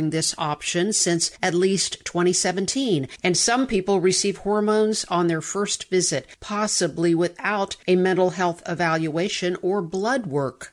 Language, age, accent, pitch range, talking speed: English, 50-69, American, 165-200 Hz, 135 wpm